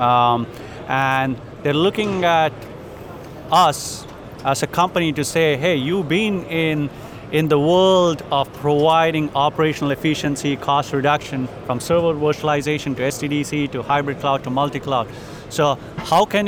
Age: 30-49